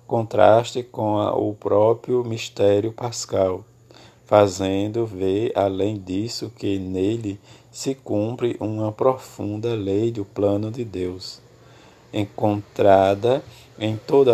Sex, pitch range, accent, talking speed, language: male, 100-120 Hz, Brazilian, 105 wpm, Portuguese